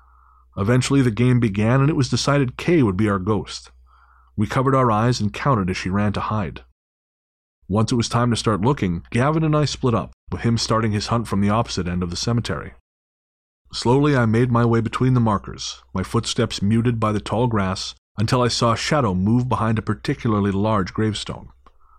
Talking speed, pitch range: 200 wpm, 100-125 Hz